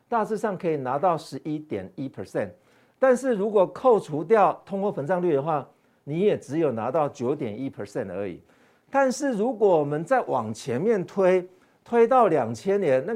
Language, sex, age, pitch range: Chinese, male, 50-69, 145-230 Hz